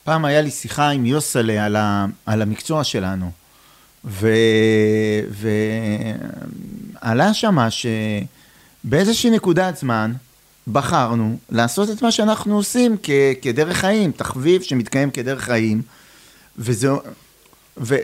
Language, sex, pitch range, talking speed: Hebrew, male, 120-180 Hz, 105 wpm